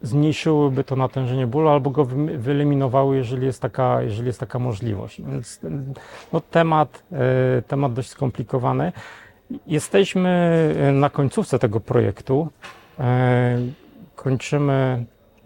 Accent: native